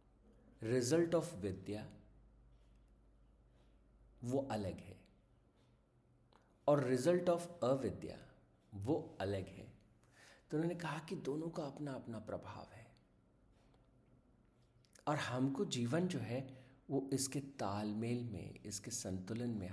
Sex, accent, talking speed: male, native, 105 wpm